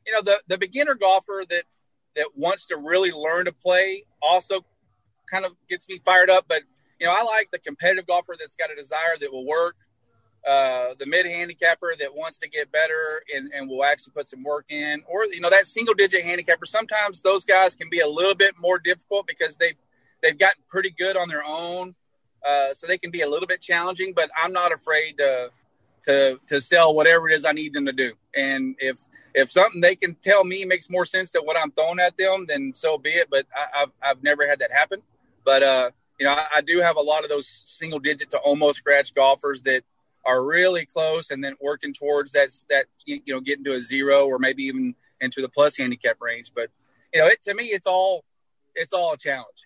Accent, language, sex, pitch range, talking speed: American, English, male, 140-185 Hz, 225 wpm